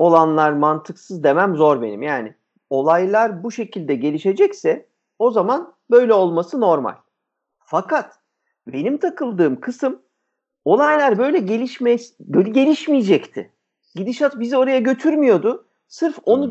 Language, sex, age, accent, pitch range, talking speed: Turkish, male, 50-69, native, 160-255 Hz, 110 wpm